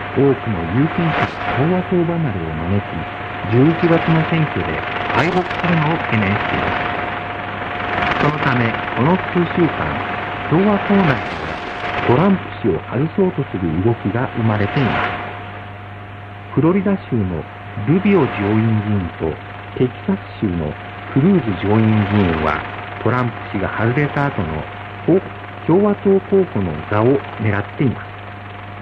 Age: 50-69